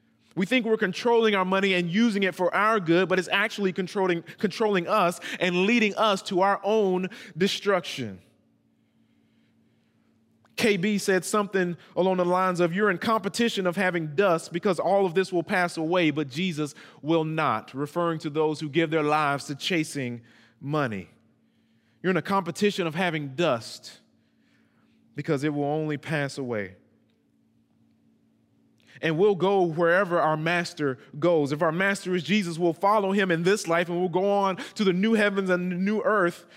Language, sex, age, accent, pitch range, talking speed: English, male, 20-39, American, 160-200 Hz, 165 wpm